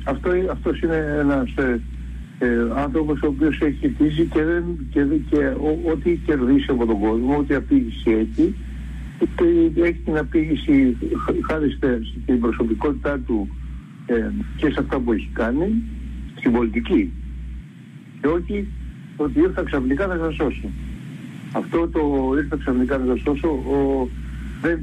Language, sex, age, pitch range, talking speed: Greek, male, 60-79, 105-150 Hz, 145 wpm